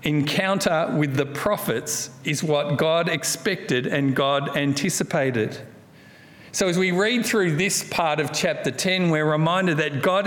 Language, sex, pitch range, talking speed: English, male, 140-180 Hz, 145 wpm